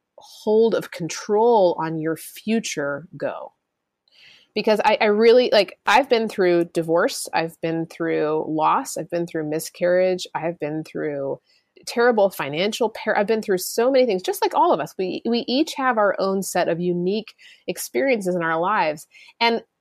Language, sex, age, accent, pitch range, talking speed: English, female, 30-49, American, 160-215 Hz, 165 wpm